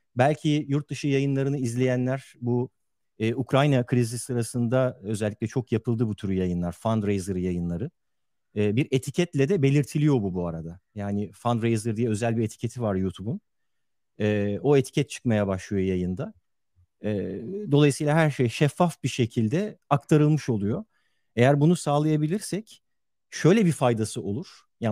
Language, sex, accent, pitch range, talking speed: Turkish, male, native, 110-145 Hz, 135 wpm